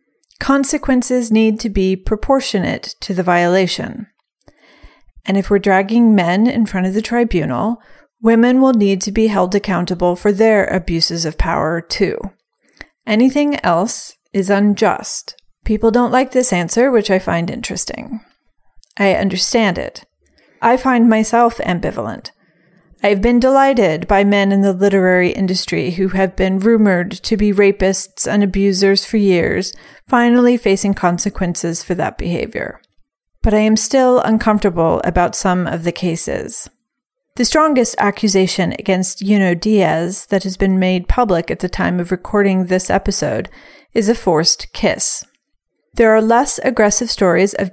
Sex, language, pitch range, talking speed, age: female, English, 185-230 Hz, 145 wpm, 30-49